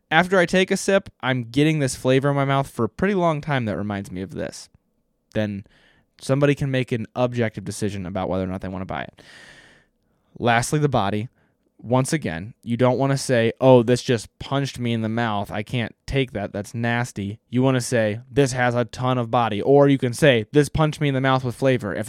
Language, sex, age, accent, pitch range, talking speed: English, male, 20-39, American, 110-140 Hz, 230 wpm